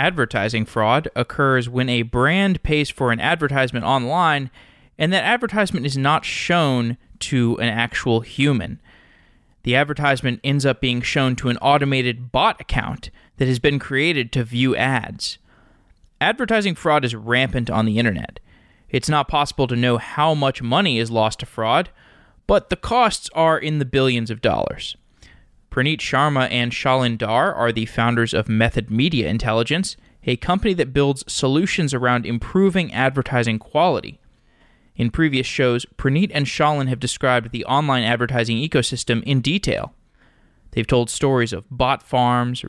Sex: male